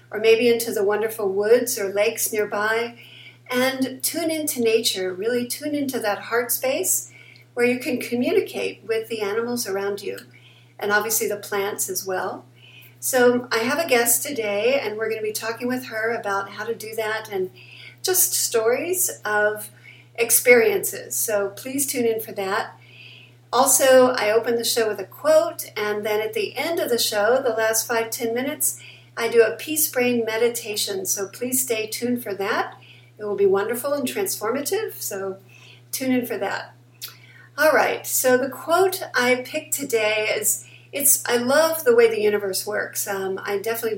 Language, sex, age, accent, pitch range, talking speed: English, female, 50-69, American, 200-255 Hz, 170 wpm